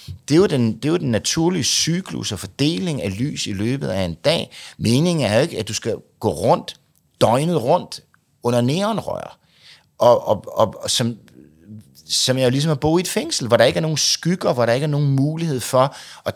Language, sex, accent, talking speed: Danish, male, native, 215 wpm